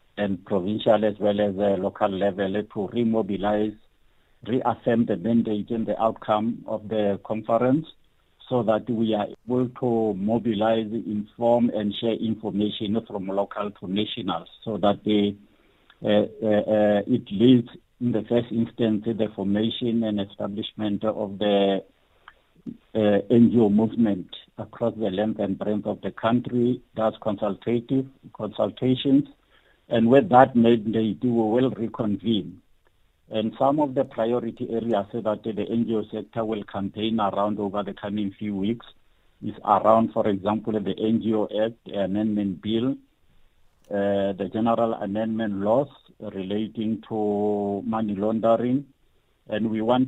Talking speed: 140 wpm